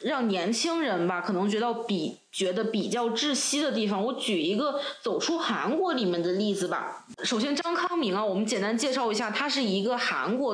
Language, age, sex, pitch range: Chinese, 20-39, female, 195-240 Hz